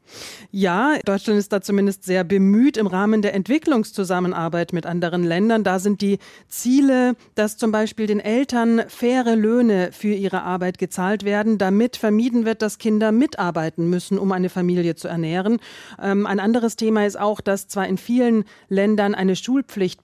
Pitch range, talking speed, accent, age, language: 190-220 Hz, 160 wpm, German, 40-59, German